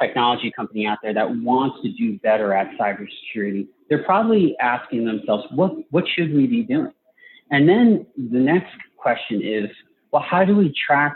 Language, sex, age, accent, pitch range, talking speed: English, male, 40-59, American, 105-145 Hz, 170 wpm